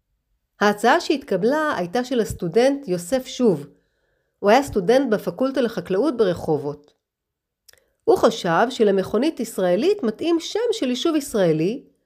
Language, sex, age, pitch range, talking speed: Hebrew, female, 40-59, 195-285 Hz, 110 wpm